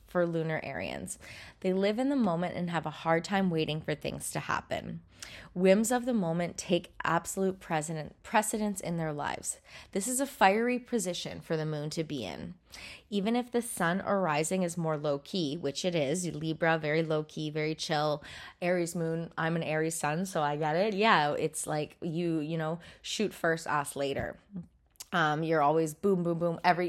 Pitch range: 155-185 Hz